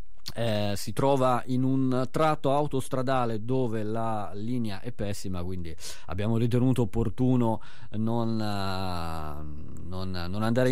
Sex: male